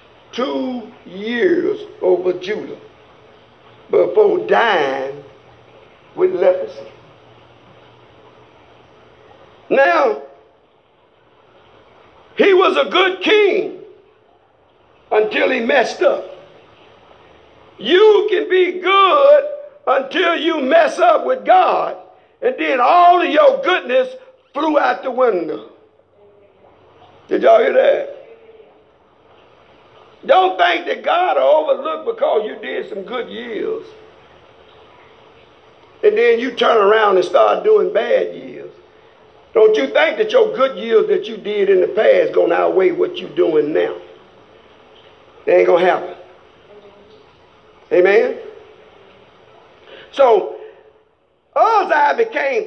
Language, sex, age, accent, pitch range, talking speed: English, male, 60-79, American, 295-450 Hz, 105 wpm